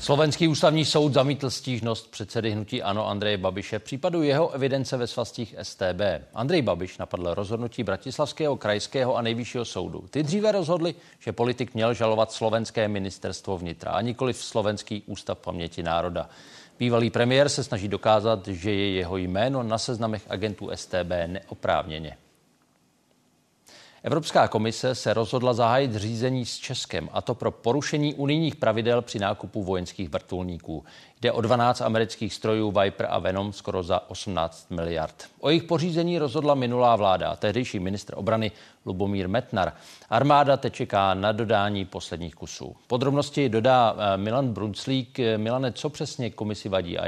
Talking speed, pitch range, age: 145 wpm, 100-130 Hz, 40-59